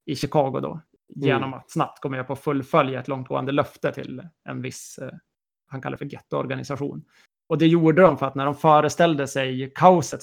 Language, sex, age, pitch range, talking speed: Swedish, male, 30-49, 135-160 Hz, 180 wpm